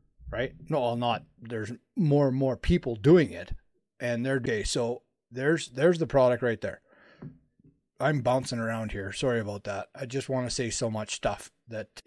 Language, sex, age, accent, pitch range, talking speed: English, male, 30-49, American, 115-140 Hz, 185 wpm